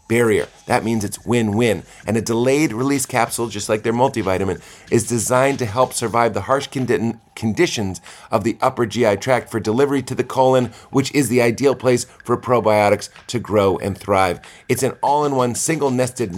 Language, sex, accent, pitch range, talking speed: English, male, American, 105-135 Hz, 175 wpm